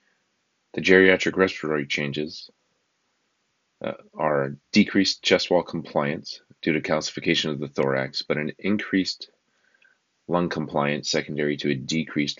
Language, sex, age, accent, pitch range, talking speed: English, male, 30-49, American, 70-85 Hz, 120 wpm